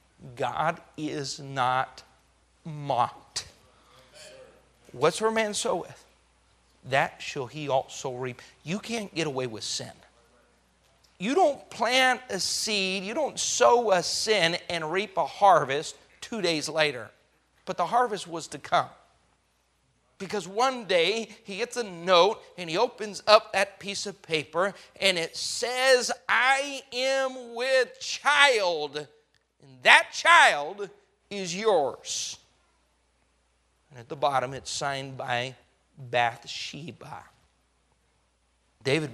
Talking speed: 120 wpm